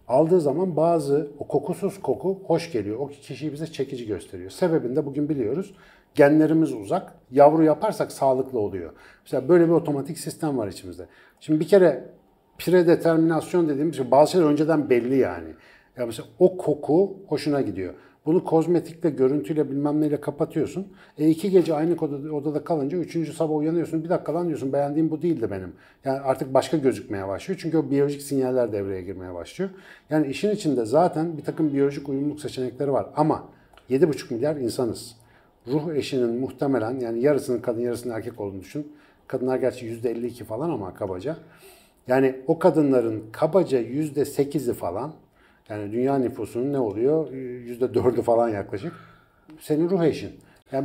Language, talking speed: Turkish, 155 wpm